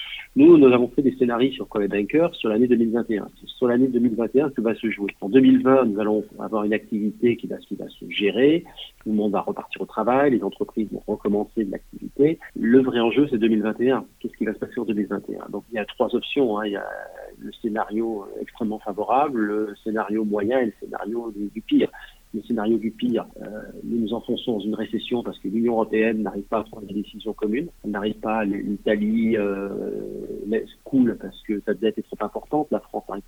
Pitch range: 105-120 Hz